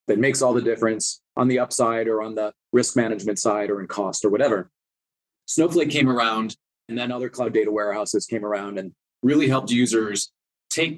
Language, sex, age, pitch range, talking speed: English, male, 30-49, 115-140 Hz, 190 wpm